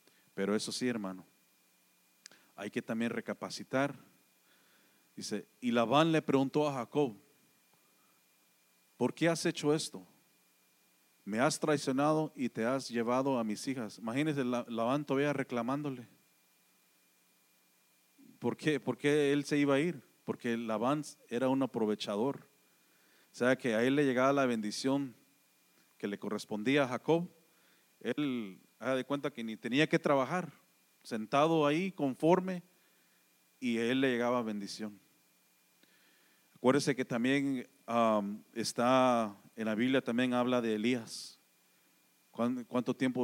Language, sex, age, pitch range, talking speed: English, male, 40-59, 100-135 Hz, 130 wpm